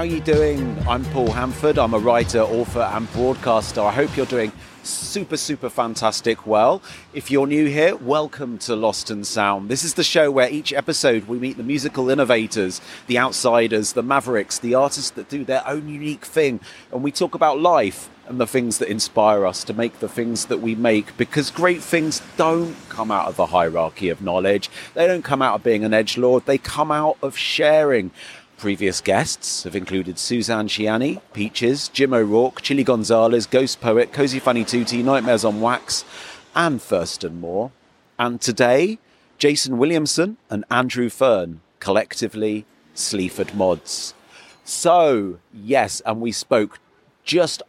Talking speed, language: 165 wpm, English